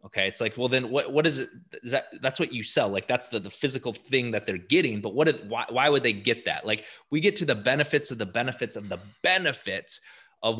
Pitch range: 105-140 Hz